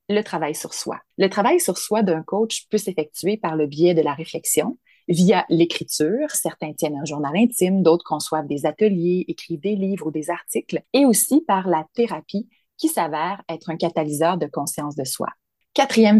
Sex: female